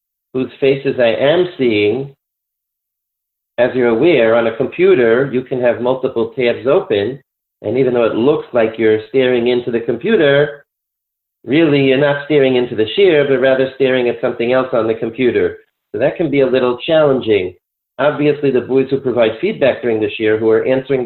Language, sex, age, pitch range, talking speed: English, male, 40-59, 120-140 Hz, 180 wpm